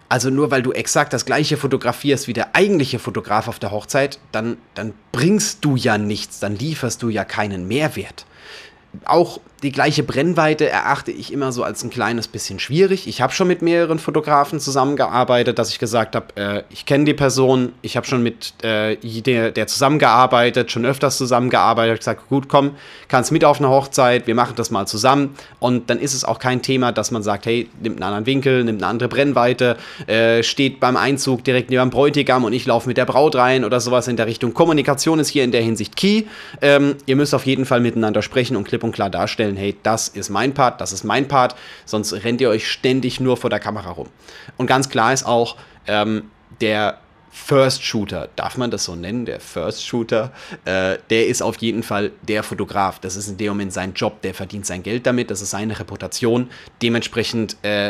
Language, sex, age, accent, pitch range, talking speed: German, male, 30-49, German, 110-135 Hz, 210 wpm